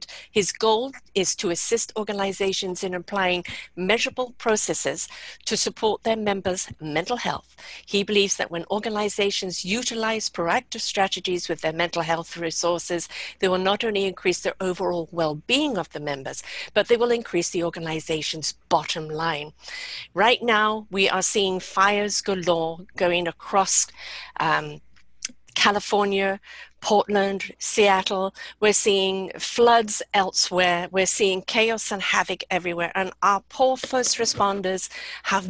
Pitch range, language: 180-220 Hz, English